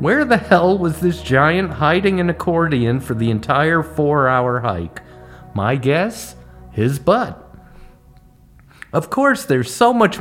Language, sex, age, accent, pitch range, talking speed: English, male, 50-69, American, 120-175 Hz, 135 wpm